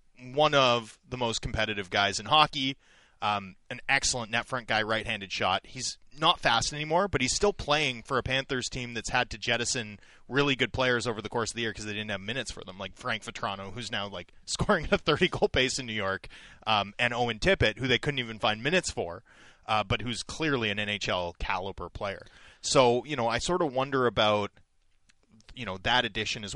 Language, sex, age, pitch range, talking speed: English, male, 30-49, 110-135 Hz, 210 wpm